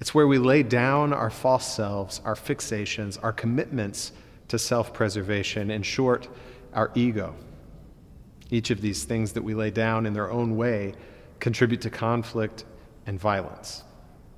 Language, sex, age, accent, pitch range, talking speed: English, male, 40-59, American, 105-125 Hz, 150 wpm